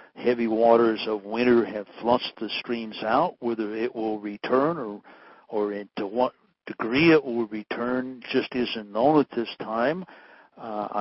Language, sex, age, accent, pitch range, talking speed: English, male, 60-79, American, 105-120 Hz, 155 wpm